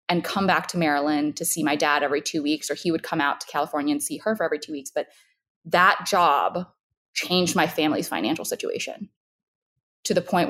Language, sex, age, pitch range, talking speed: English, female, 20-39, 160-220 Hz, 210 wpm